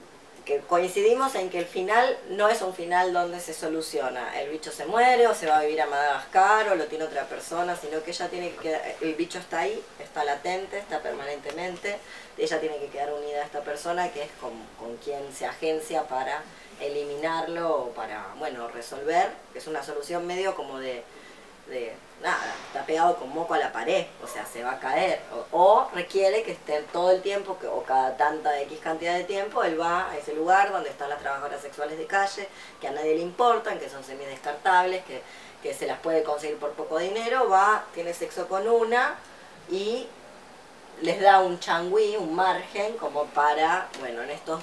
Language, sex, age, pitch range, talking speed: Spanish, female, 20-39, 150-195 Hz, 200 wpm